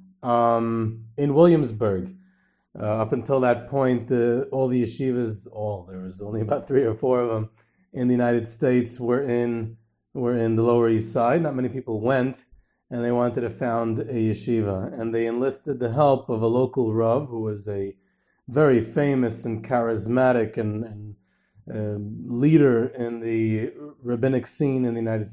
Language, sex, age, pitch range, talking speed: English, male, 30-49, 110-130 Hz, 165 wpm